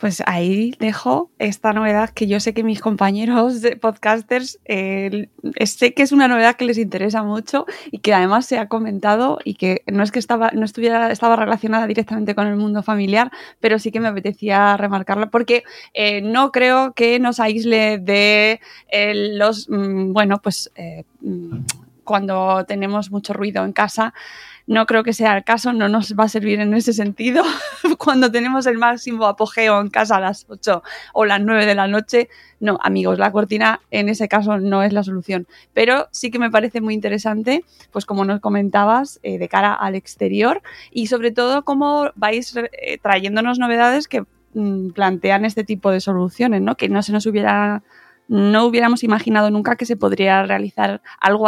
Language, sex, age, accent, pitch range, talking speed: Spanish, female, 20-39, Spanish, 205-235 Hz, 180 wpm